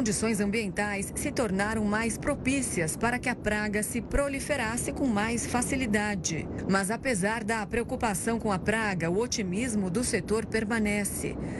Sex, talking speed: female, 140 wpm